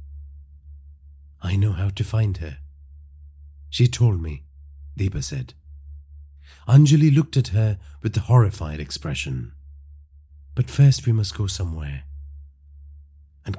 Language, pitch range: English, 75-115 Hz